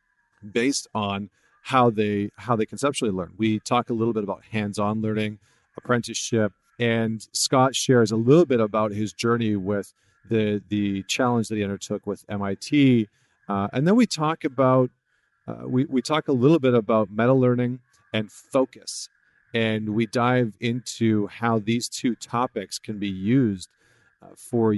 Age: 40-59